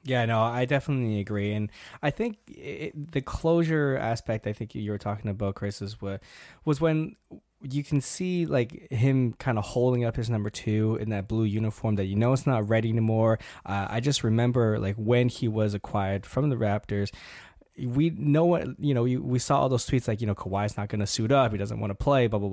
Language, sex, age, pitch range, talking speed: English, male, 20-39, 105-140 Hz, 215 wpm